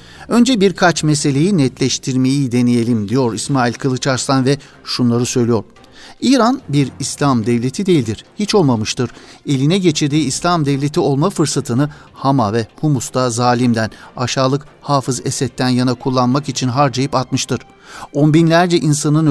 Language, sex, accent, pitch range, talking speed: Turkish, male, native, 120-145 Hz, 120 wpm